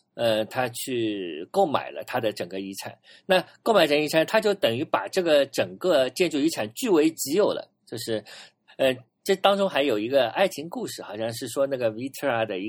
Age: 50-69